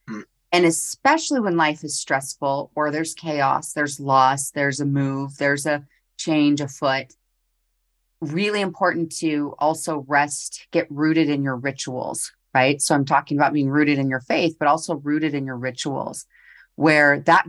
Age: 30-49